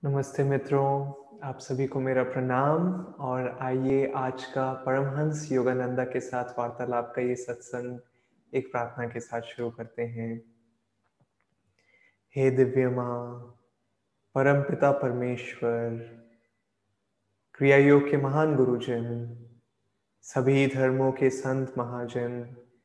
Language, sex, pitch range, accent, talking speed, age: Hindi, male, 120-135 Hz, native, 110 wpm, 20-39